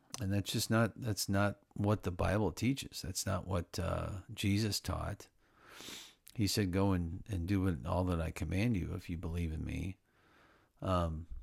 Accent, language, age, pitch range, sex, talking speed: American, English, 50-69, 90-105 Hz, male, 175 wpm